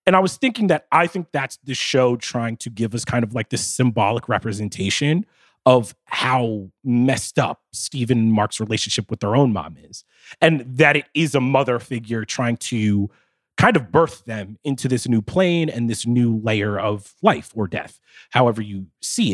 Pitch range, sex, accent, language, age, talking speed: 115-165 Hz, male, American, English, 30-49, 190 wpm